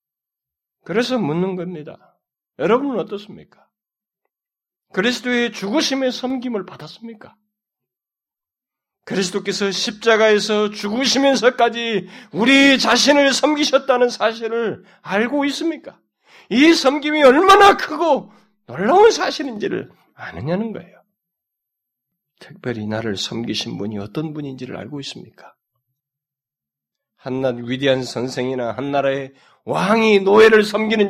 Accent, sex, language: native, male, Korean